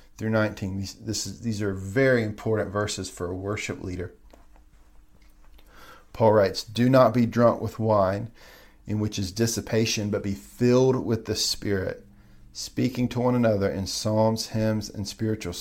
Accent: American